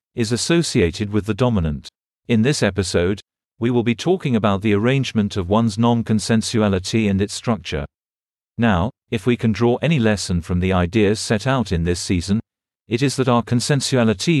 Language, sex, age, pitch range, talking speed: English, male, 50-69, 100-120 Hz, 170 wpm